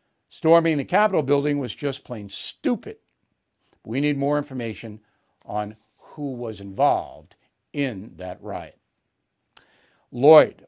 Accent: American